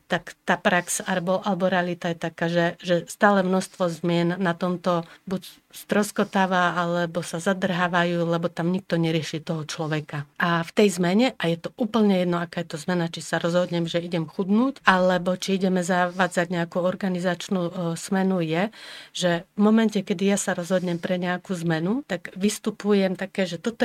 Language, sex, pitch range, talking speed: Slovak, female, 170-195 Hz, 170 wpm